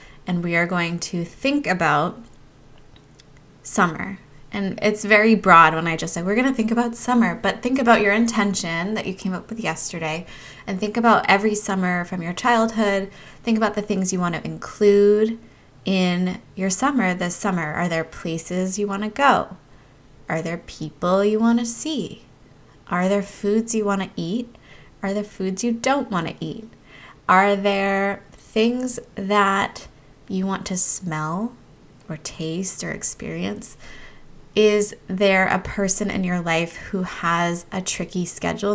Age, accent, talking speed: 20-39, American, 165 wpm